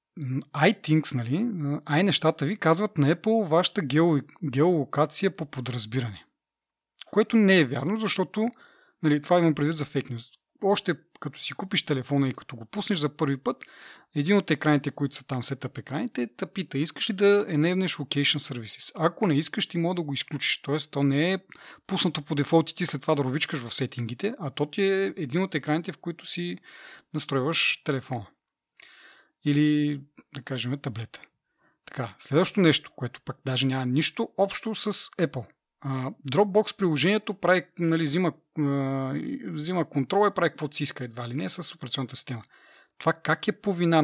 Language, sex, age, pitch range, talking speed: Bulgarian, male, 30-49, 135-175 Hz, 175 wpm